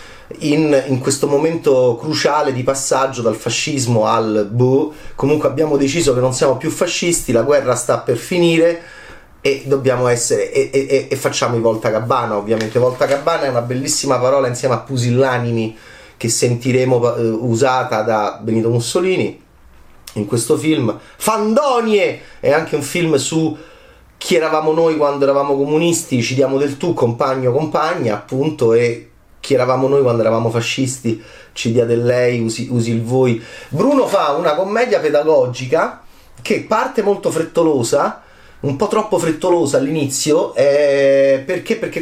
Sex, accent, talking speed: male, native, 145 wpm